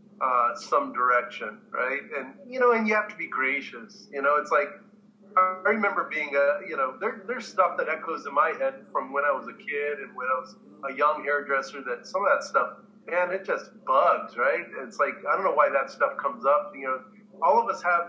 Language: English